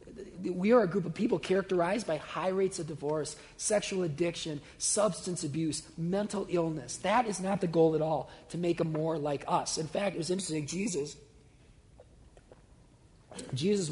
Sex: male